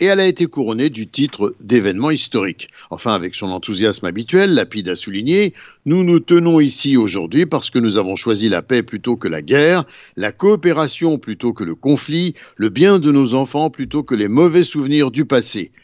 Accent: French